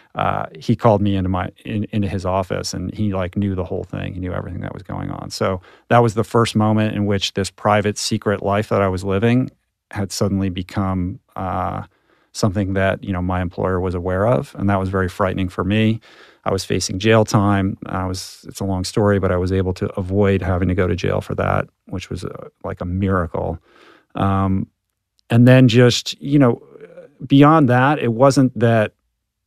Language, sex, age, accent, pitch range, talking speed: English, male, 40-59, American, 95-110 Hz, 205 wpm